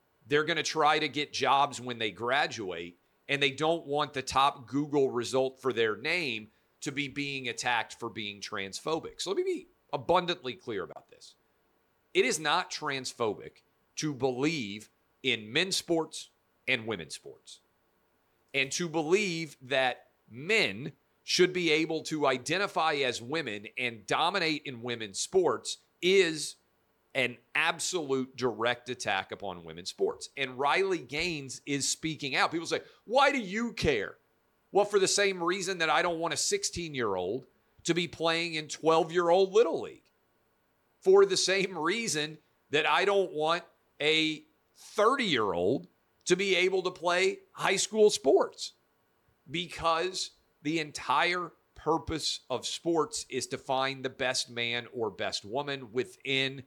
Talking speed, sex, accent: 145 wpm, male, American